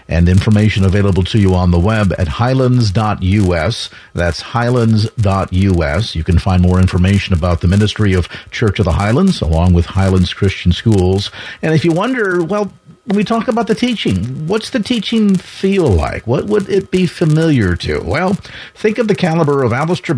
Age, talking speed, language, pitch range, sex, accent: 50-69, 175 wpm, English, 95-135 Hz, male, American